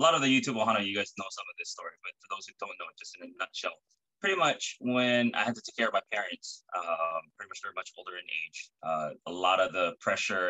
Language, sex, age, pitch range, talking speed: English, male, 20-39, 95-125 Hz, 275 wpm